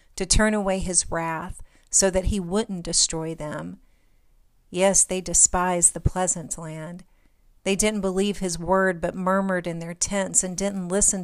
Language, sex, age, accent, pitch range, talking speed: English, female, 40-59, American, 170-195 Hz, 160 wpm